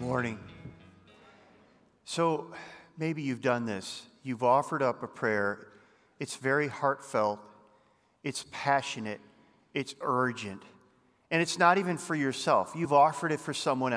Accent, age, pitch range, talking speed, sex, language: American, 40-59, 115-145 Hz, 125 wpm, male, English